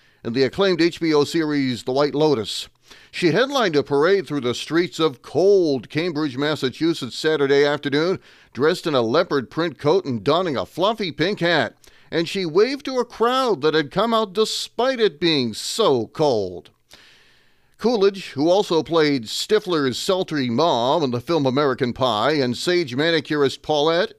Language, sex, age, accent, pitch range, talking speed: English, male, 40-59, American, 135-185 Hz, 160 wpm